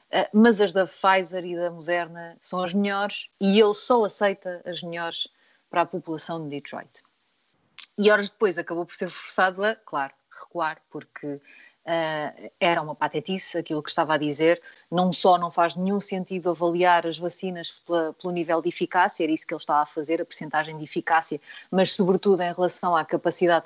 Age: 30-49